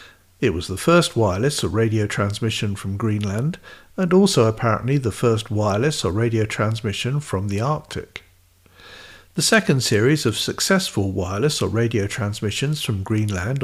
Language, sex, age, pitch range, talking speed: English, male, 50-69, 105-130 Hz, 145 wpm